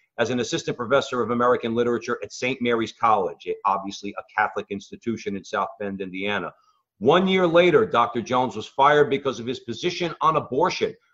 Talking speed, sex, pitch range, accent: 170 wpm, male, 110-135 Hz, American